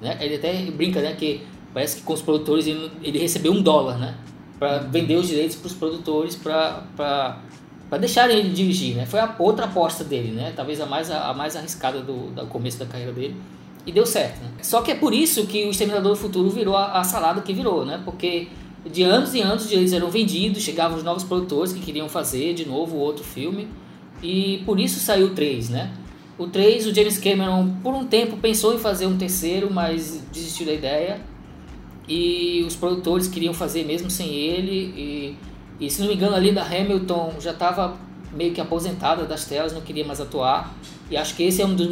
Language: Portuguese